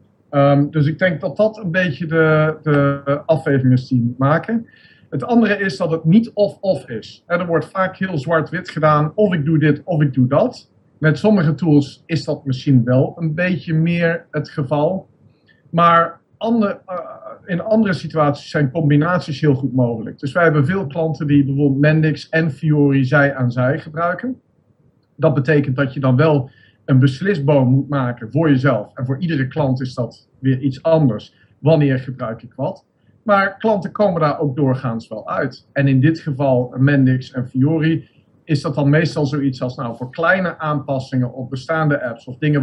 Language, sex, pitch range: Dutch, male, 130-165 Hz